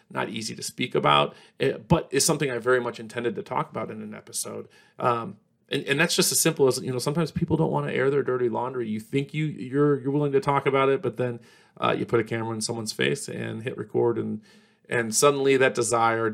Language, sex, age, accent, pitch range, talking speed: English, male, 40-59, American, 115-140 Hz, 240 wpm